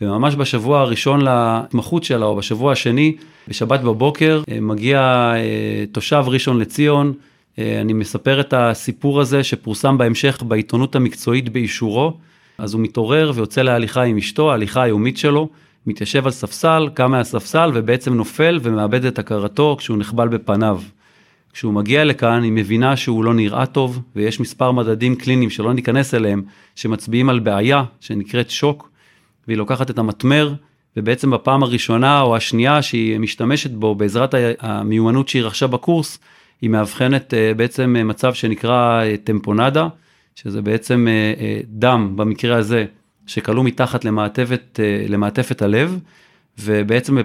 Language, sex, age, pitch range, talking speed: Hebrew, male, 40-59, 110-135 Hz, 130 wpm